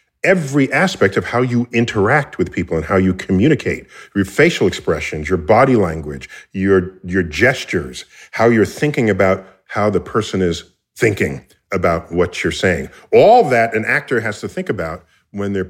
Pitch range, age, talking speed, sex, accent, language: 90-110 Hz, 40-59, 170 wpm, male, American, English